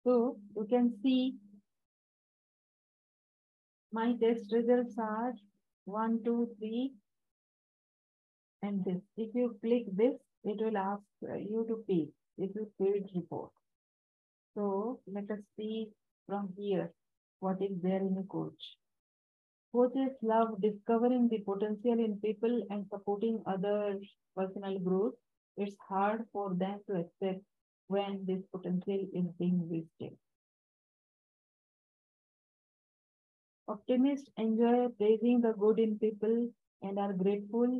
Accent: Indian